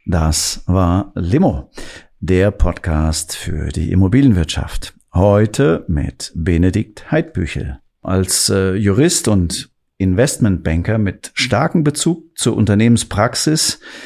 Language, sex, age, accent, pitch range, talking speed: German, male, 50-69, German, 90-120 Hz, 95 wpm